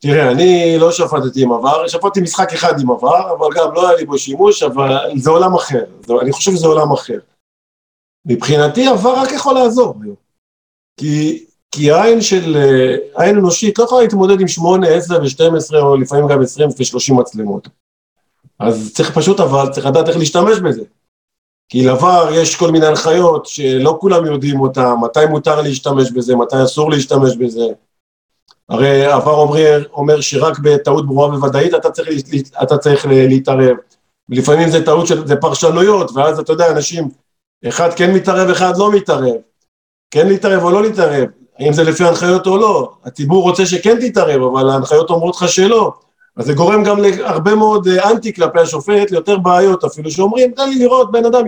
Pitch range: 140-190 Hz